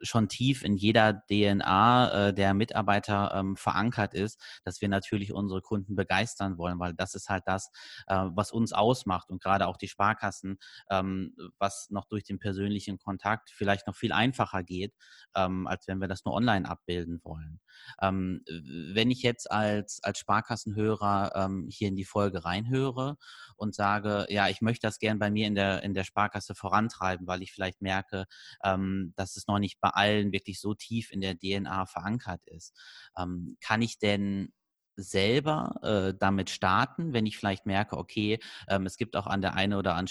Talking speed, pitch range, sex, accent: 170 wpm, 95-110 Hz, male, German